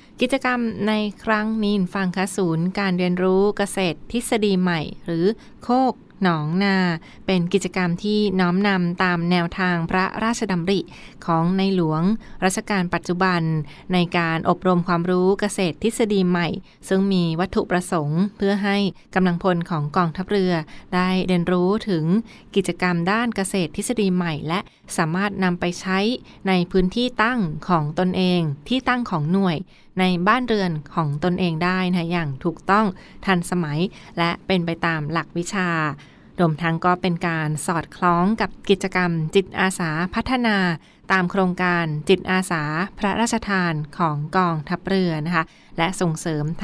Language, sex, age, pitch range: Thai, female, 20-39, 170-195 Hz